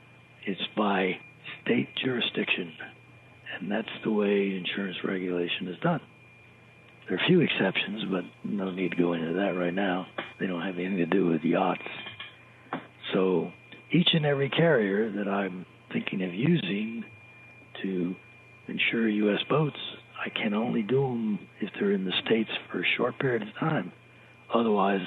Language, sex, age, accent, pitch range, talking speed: English, male, 60-79, American, 95-145 Hz, 155 wpm